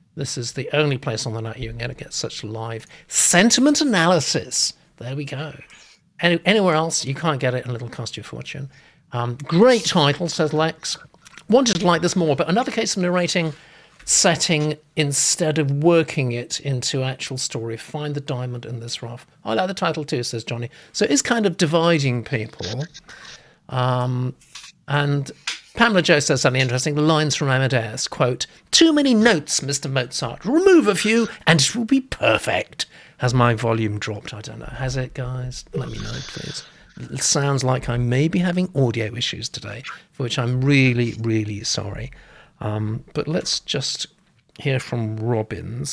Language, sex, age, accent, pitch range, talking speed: English, male, 50-69, British, 120-165 Hz, 175 wpm